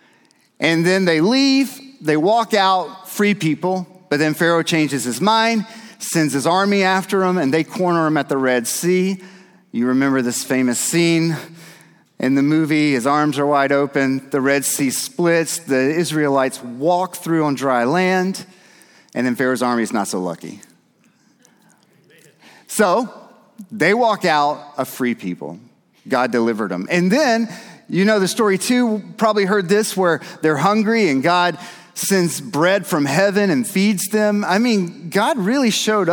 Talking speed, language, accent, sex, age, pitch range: 160 wpm, English, American, male, 40-59, 145-200 Hz